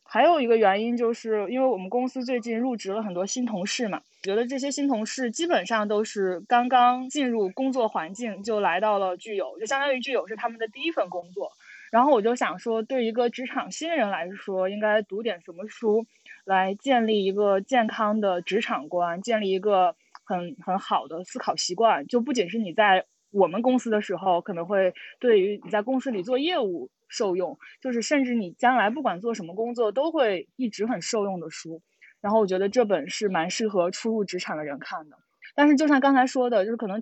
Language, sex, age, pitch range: Chinese, female, 20-39, 190-245 Hz